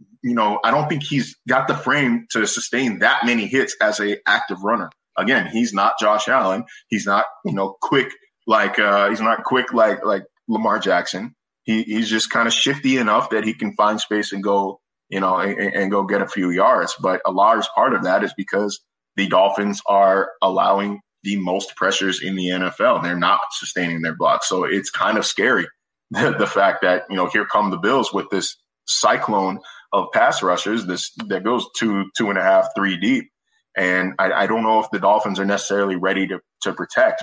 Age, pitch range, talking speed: 20-39, 95-115 Hz, 210 wpm